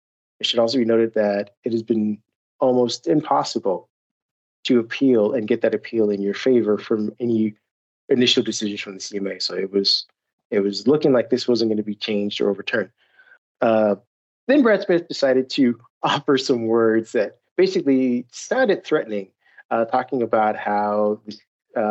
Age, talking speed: 30-49, 165 wpm